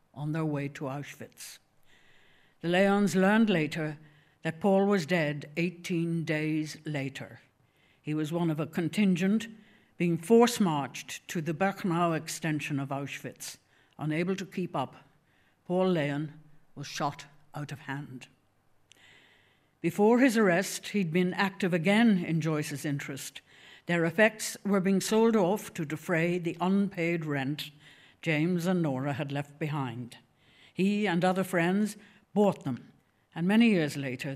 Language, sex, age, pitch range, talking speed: English, female, 60-79, 140-180 Hz, 140 wpm